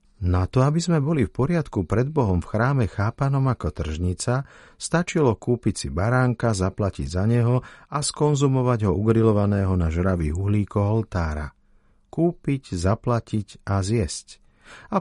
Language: Slovak